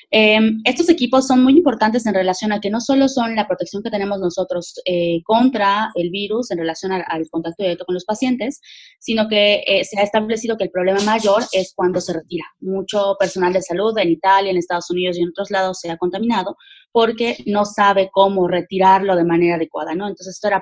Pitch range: 180-225 Hz